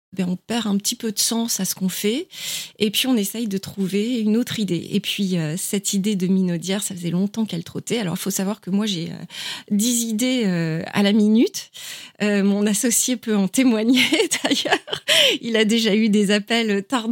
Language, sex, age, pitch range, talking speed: French, female, 30-49, 185-230 Hz, 200 wpm